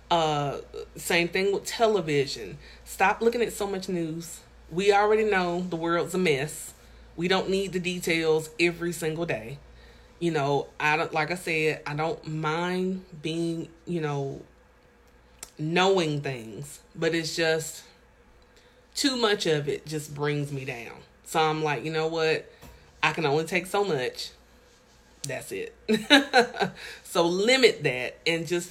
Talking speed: 150 wpm